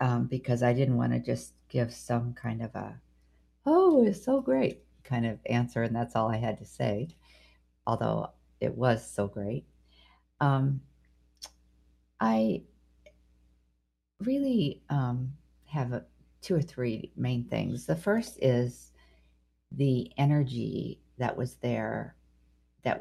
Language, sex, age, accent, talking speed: English, female, 50-69, American, 135 wpm